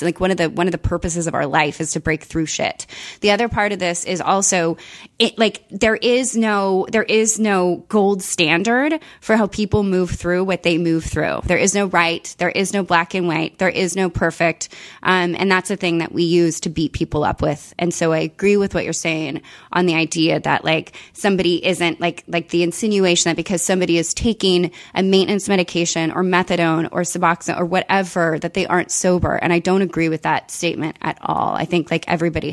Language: English